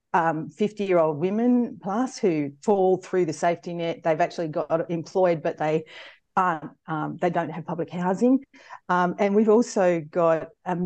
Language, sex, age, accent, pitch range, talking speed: English, female, 40-59, Australian, 160-190 Hz, 170 wpm